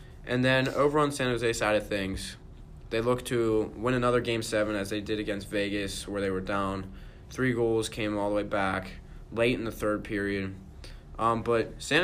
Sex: male